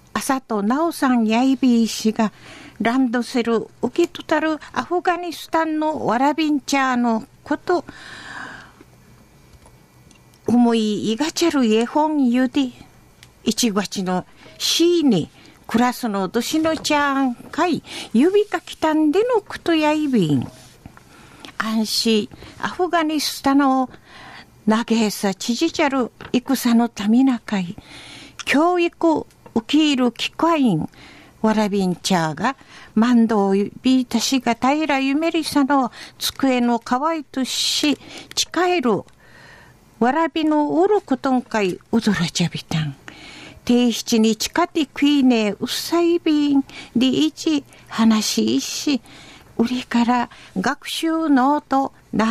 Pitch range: 225-305 Hz